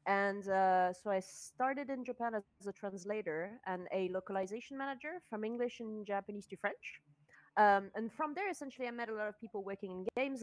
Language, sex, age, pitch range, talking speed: English, female, 30-49, 185-240 Hz, 195 wpm